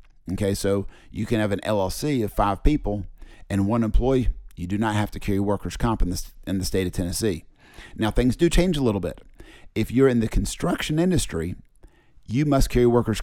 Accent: American